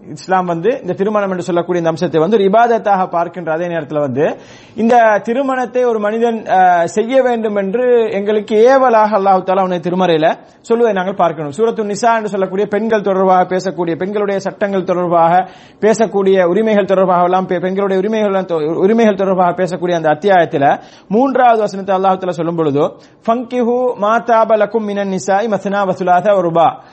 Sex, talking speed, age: male, 100 wpm, 30-49